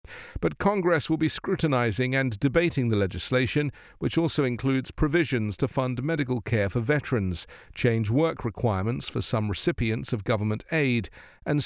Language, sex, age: English, male, 40-59